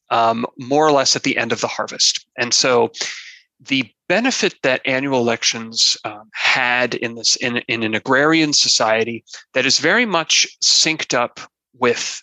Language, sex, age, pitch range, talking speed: English, male, 30-49, 115-150 Hz, 160 wpm